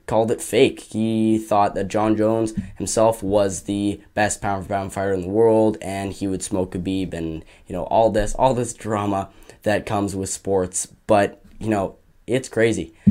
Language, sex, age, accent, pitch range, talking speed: English, male, 10-29, American, 95-110 Hz, 190 wpm